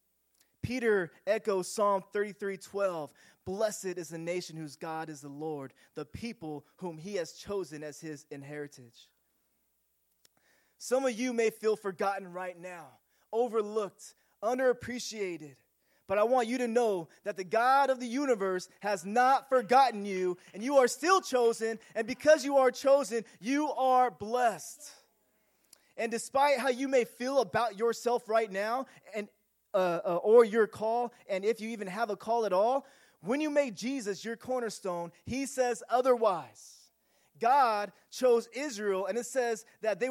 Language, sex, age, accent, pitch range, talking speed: English, male, 20-39, American, 190-250 Hz, 155 wpm